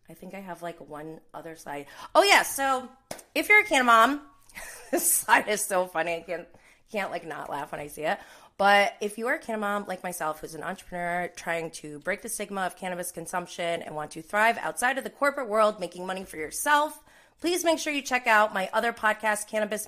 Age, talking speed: 30-49, 225 wpm